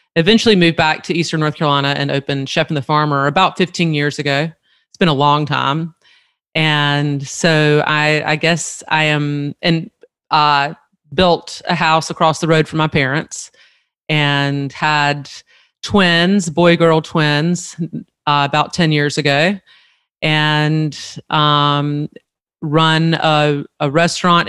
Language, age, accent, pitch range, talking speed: English, 30-49, American, 145-165 Hz, 135 wpm